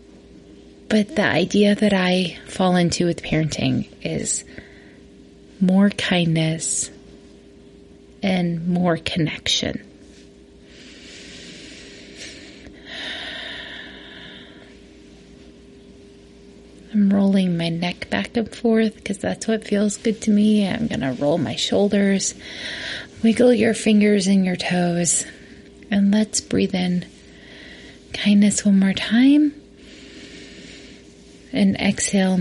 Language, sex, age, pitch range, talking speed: English, female, 30-49, 165-215 Hz, 95 wpm